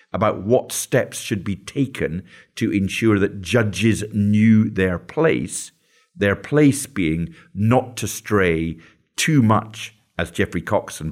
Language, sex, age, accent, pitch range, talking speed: English, male, 50-69, British, 90-110 Hz, 135 wpm